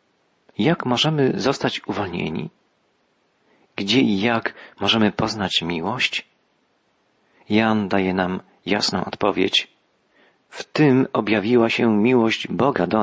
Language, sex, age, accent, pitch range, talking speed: Polish, male, 40-59, native, 105-130 Hz, 100 wpm